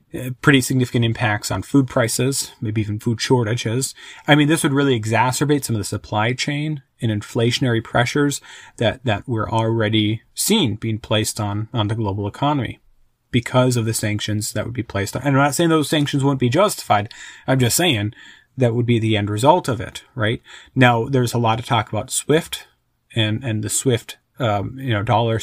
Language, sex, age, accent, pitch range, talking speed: English, male, 30-49, American, 110-135 Hz, 195 wpm